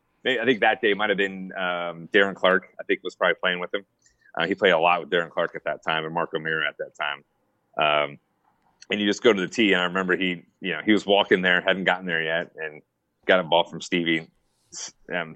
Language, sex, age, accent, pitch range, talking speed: English, male, 30-49, American, 85-100 Hz, 240 wpm